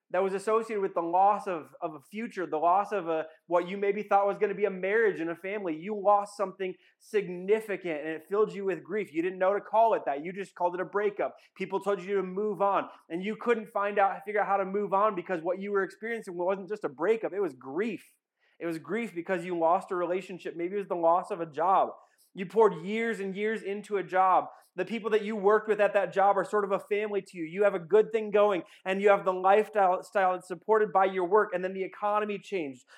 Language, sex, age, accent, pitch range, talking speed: English, male, 30-49, American, 185-215 Hz, 255 wpm